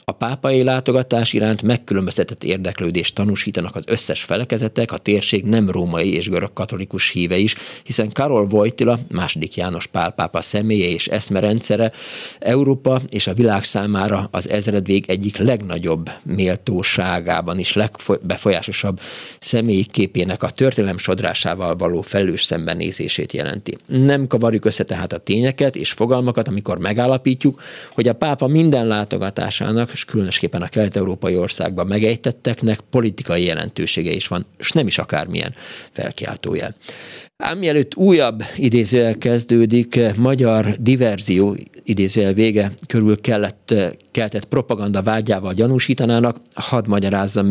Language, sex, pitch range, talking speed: Hungarian, male, 95-120 Hz, 120 wpm